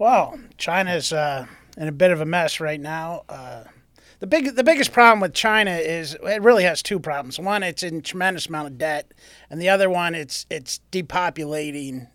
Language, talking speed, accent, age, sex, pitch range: English, 195 wpm, American, 30-49, male, 150-190 Hz